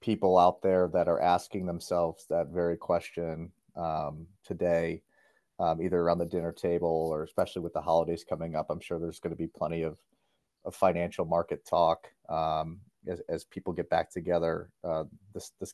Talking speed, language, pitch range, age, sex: 180 wpm, English, 85-100 Hz, 30-49, male